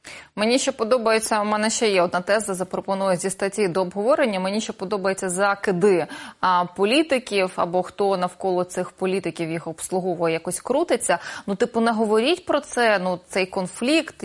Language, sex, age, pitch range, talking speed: Russian, female, 20-39, 185-240 Hz, 160 wpm